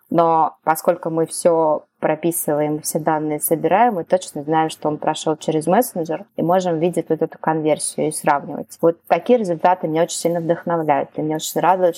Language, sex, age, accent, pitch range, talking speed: Russian, female, 20-39, native, 160-185 Hz, 175 wpm